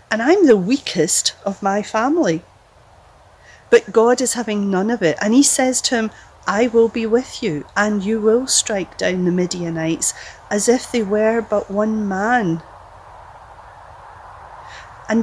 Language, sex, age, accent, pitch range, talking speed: English, female, 40-59, British, 185-245 Hz, 155 wpm